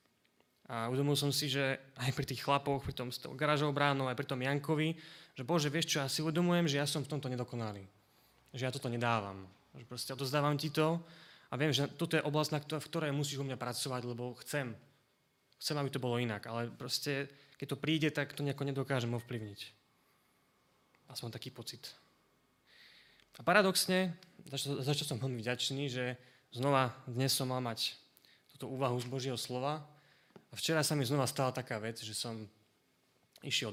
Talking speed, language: 180 wpm, Slovak